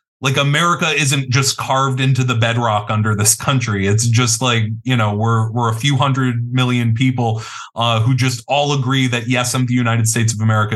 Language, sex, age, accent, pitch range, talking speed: French, male, 20-39, American, 105-130 Hz, 200 wpm